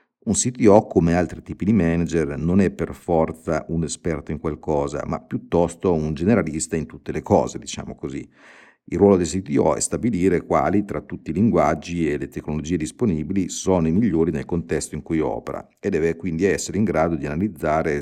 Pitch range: 80-95 Hz